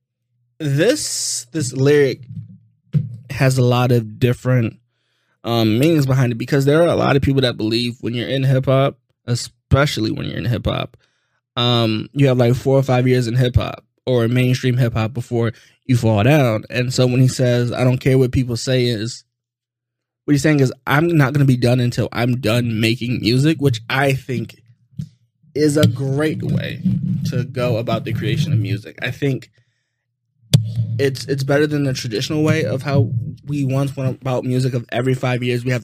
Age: 20-39